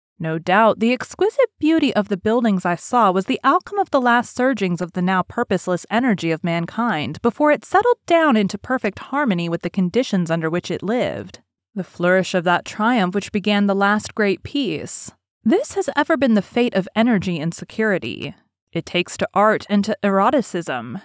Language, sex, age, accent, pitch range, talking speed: English, female, 30-49, American, 185-255 Hz, 190 wpm